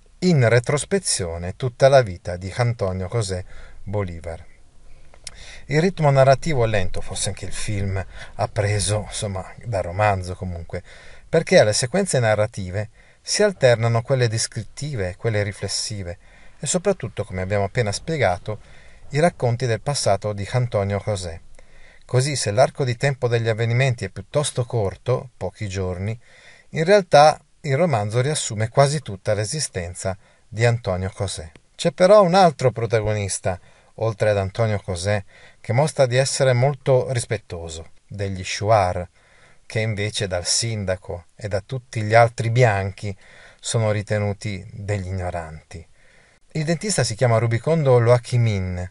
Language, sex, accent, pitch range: Italian, male, native, 95-130 Hz